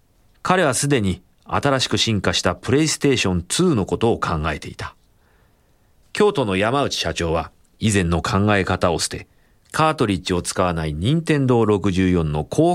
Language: Japanese